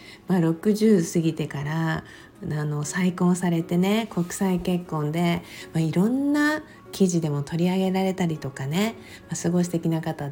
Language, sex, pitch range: Japanese, female, 160-215 Hz